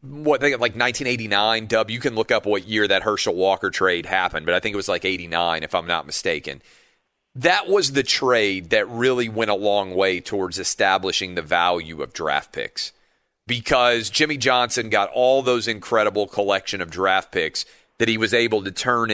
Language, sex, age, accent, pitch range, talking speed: English, male, 40-59, American, 95-130 Hz, 190 wpm